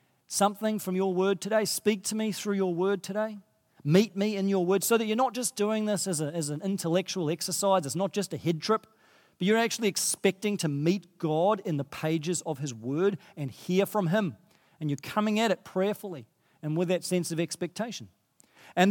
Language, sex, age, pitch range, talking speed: English, male, 40-59, 170-210 Hz, 205 wpm